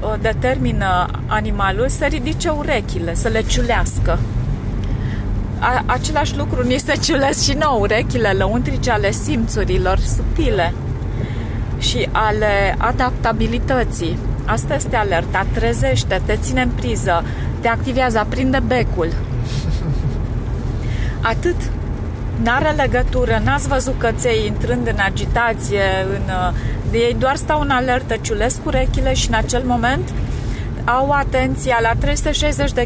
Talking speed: 110 wpm